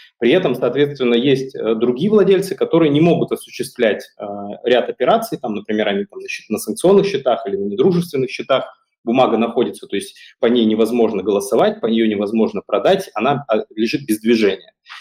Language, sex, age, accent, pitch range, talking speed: Russian, male, 30-49, native, 110-165 Hz, 170 wpm